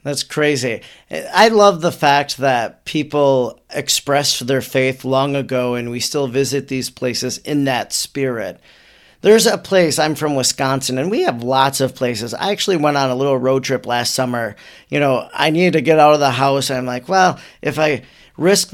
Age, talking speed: 40-59, 190 wpm